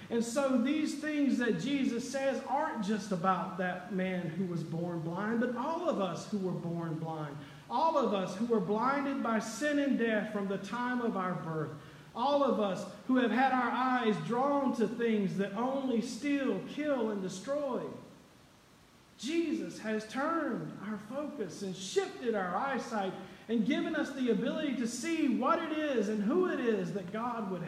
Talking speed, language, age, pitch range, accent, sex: 180 wpm, English, 40-59, 180-240 Hz, American, male